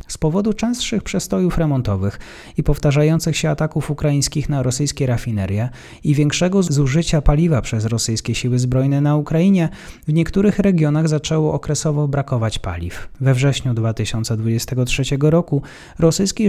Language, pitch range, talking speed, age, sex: Polish, 120-160 Hz, 125 wpm, 30-49, male